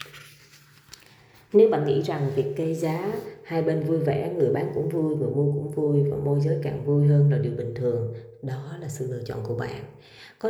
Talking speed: 210 wpm